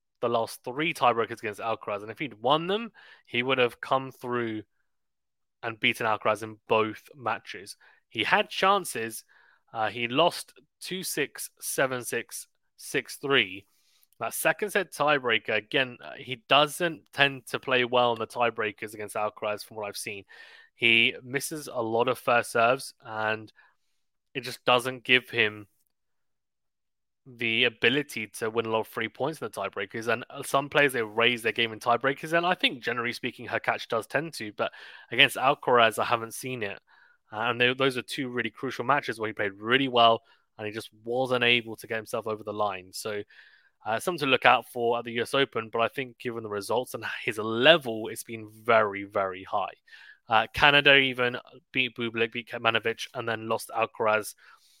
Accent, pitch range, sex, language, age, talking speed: British, 110-135 Hz, male, English, 20-39, 175 wpm